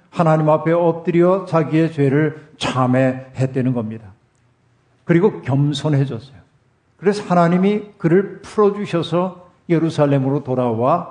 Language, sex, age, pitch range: Korean, male, 50-69, 135-175 Hz